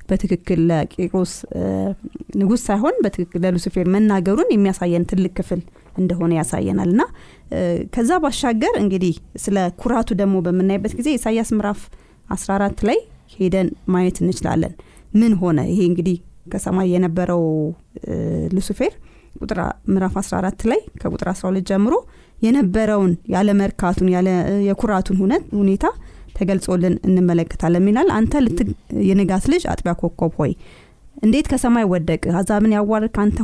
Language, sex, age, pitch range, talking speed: Amharic, female, 20-39, 180-225 Hz, 100 wpm